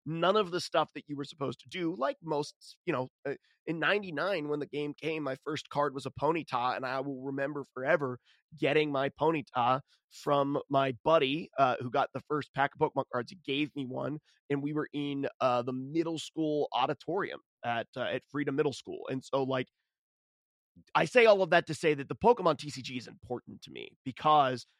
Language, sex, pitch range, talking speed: English, male, 135-160 Hz, 205 wpm